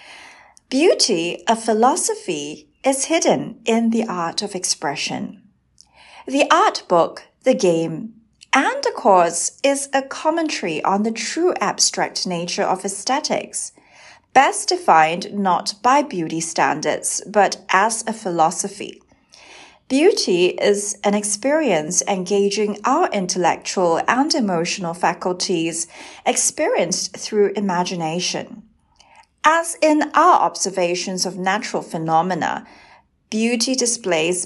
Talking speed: 105 wpm